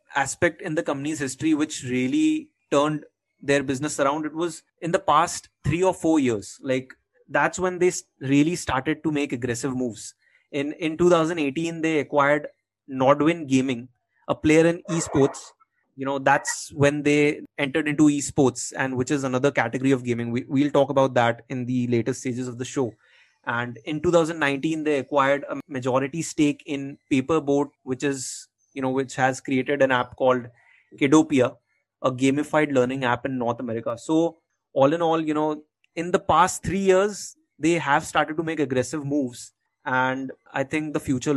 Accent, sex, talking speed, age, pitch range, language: Indian, male, 175 wpm, 20-39, 130-160 Hz, English